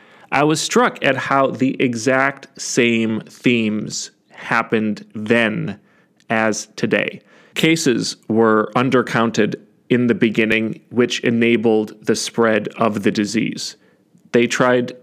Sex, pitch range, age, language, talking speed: male, 115-140 Hz, 30-49, English, 110 wpm